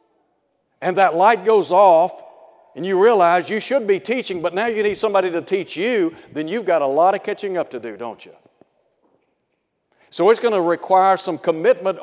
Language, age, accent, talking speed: English, 60-79, American, 195 wpm